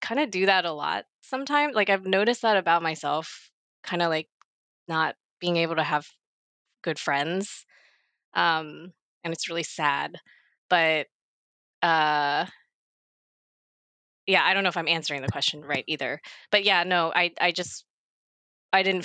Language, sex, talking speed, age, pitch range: English, female, 155 wpm, 20-39, 150-185 Hz